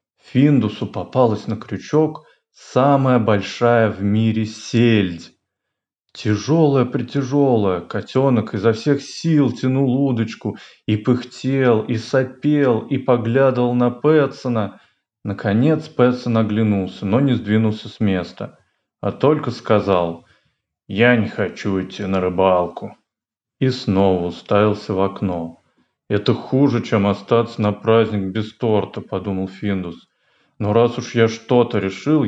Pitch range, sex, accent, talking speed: 100-125 Hz, male, native, 115 wpm